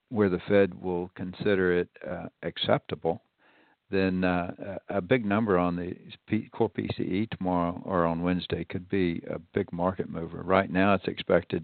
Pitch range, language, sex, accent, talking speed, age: 85-95 Hz, English, male, American, 165 wpm, 60-79